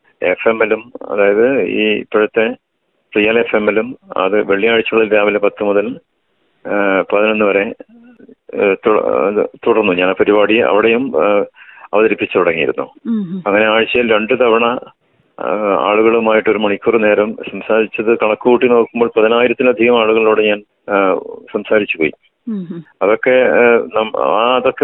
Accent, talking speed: native, 75 wpm